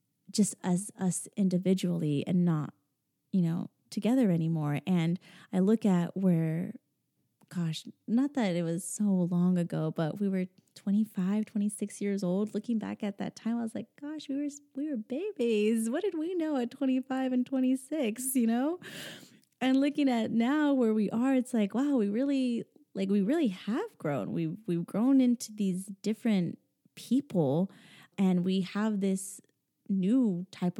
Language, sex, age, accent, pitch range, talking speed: English, female, 20-39, American, 180-240 Hz, 165 wpm